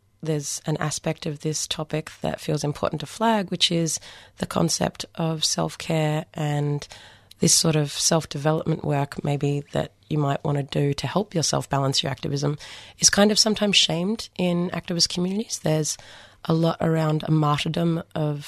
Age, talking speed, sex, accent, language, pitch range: 30-49, 165 wpm, female, Australian, English, 145-170 Hz